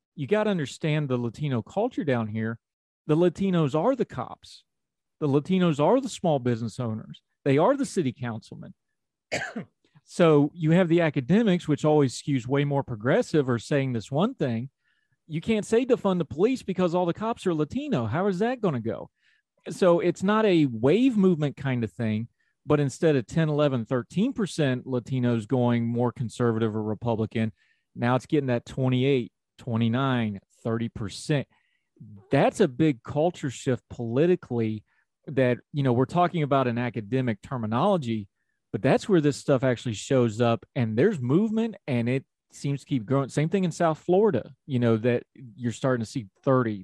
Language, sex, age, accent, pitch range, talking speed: English, male, 40-59, American, 120-165 Hz, 170 wpm